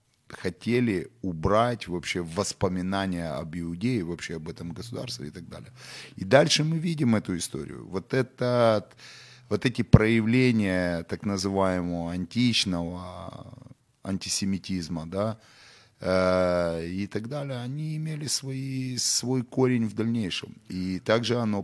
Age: 30-49